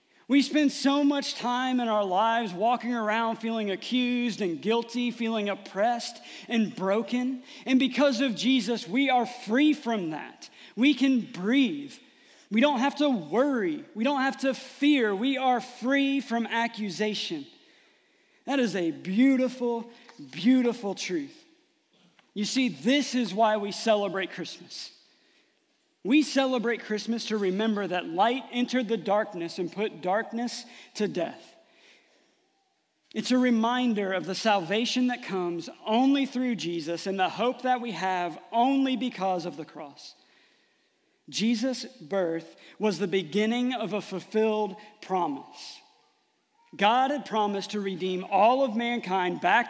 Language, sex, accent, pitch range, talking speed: English, male, American, 205-270 Hz, 140 wpm